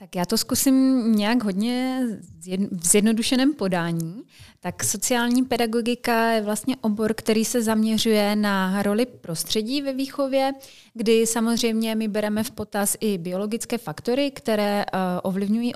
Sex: female